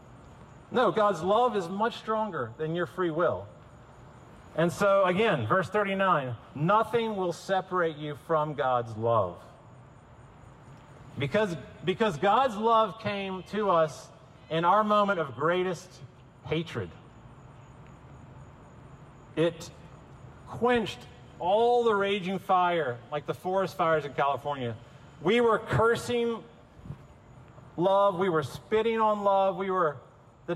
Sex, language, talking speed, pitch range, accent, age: male, English, 115 wpm, 130-195 Hz, American, 40-59